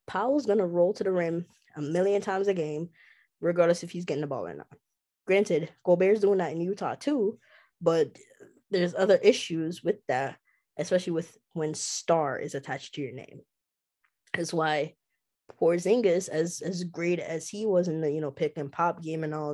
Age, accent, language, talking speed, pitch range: 20-39, American, English, 190 wpm, 160-210 Hz